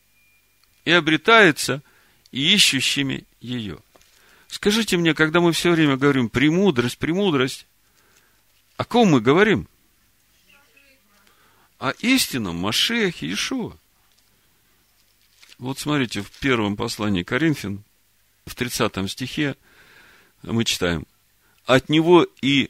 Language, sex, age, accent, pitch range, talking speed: Russian, male, 50-69, native, 100-155 Hz, 95 wpm